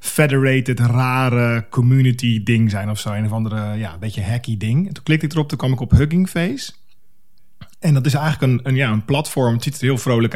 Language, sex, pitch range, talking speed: Dutch, male, 110-135 Hz, 215 wpm